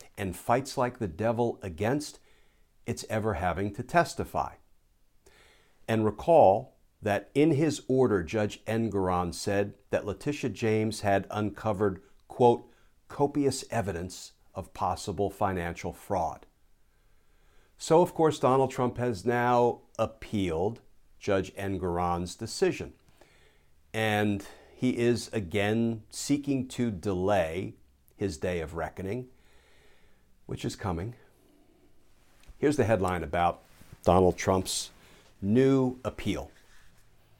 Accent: American